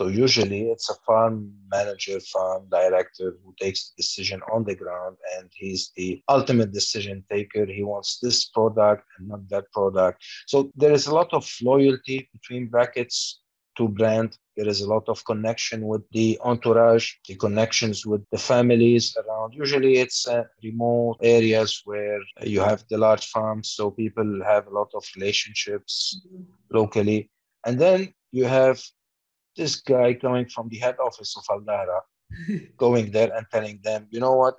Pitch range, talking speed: 105-125 Hz, 165 wpm